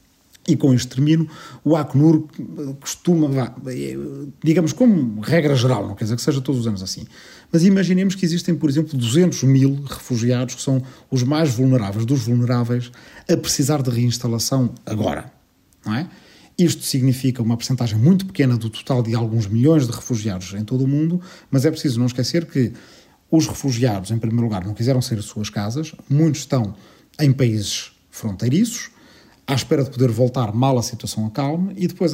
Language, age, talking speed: Portuguese, 40-59, 170 wpm